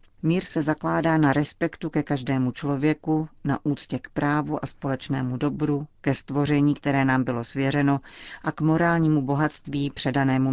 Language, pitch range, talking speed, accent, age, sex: Czech, 130-150 Hz, 150 wpm, native, 40-59, female